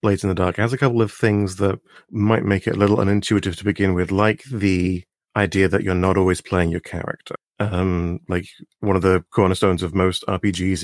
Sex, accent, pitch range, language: male, British, 90-100 Hz, English